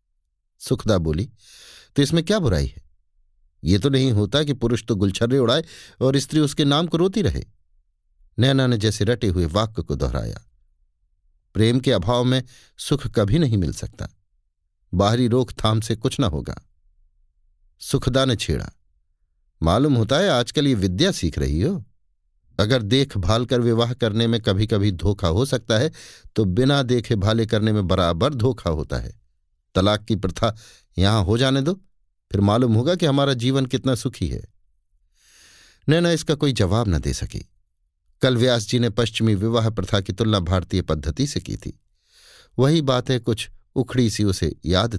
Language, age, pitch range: Hindi, 50-69, 85-130 Hz